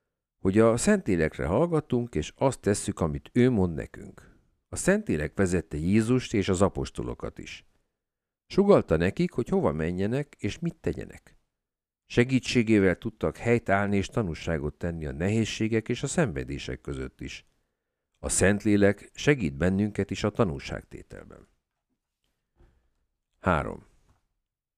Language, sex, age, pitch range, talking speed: Hungarian, male, 50-69, 80-125 Hz, 120 wpm